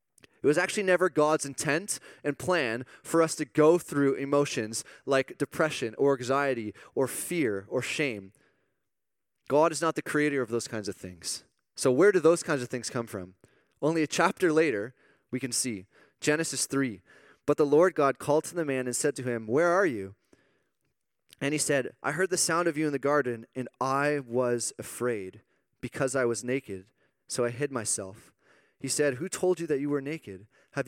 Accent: American